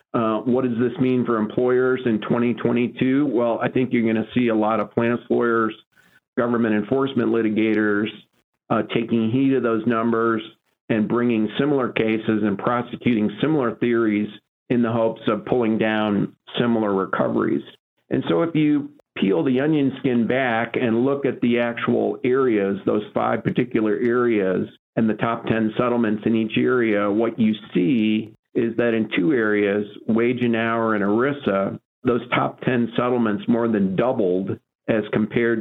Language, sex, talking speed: English, male, 160 wpm